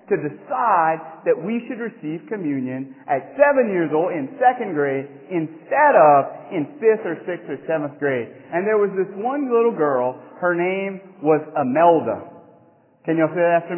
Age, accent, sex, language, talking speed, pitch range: 40-59, American, male, English, 170 wpm, 155-220 Hz